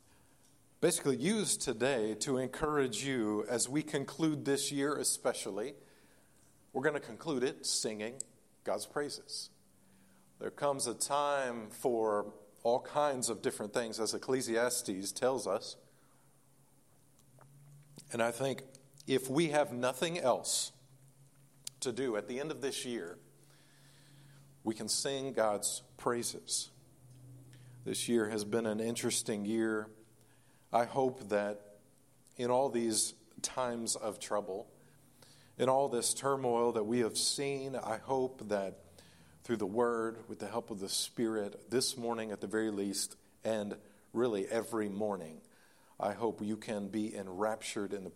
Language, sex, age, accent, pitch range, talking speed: English, male, 50-69, American, 110-135 Hz, 135 wpm